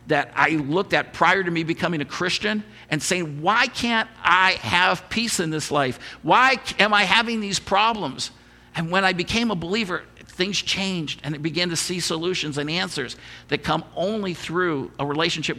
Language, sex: English, male